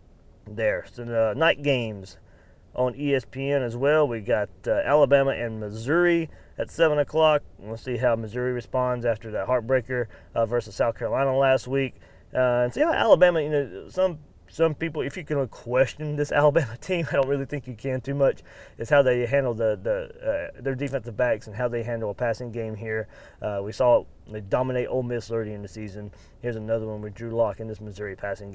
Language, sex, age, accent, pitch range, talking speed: English, male, 30-49, American, 110-135 Hz, 200 wpm